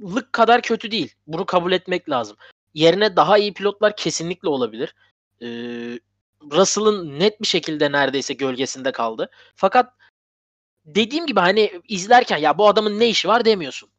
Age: 20-39